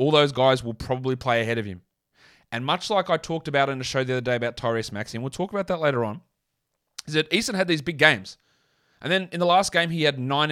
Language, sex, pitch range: English, male, 125-160 Hz